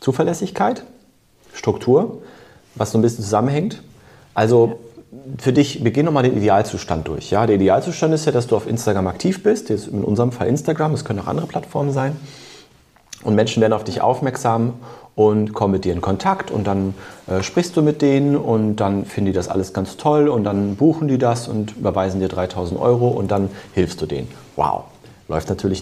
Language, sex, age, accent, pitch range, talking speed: German, male, 30-49, German, 100-130 Hz, 195 wpm